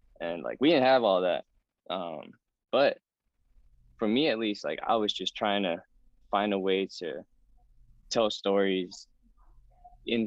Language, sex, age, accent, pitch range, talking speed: English, male, 10-29, American, 95-120 Hz, 150 wpm